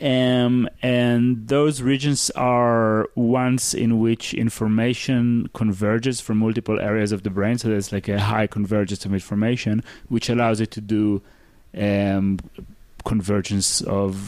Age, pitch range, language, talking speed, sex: 30-49, 100-120 Hz, English, 135 wpm, male